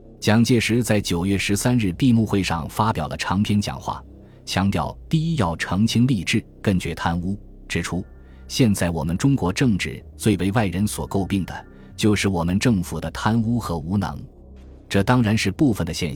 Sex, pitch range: male, 80-110 Hz